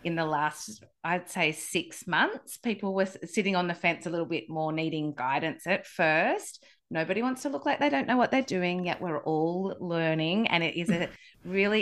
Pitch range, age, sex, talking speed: 160-195 Hz, 30-49, female, 210 wpm